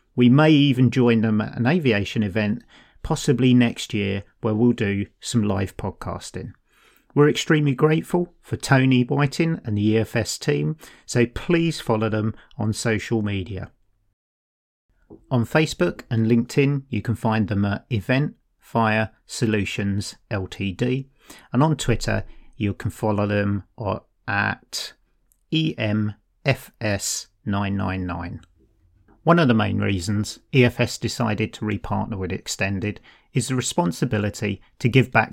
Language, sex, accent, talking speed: English, male, British, 125 wpm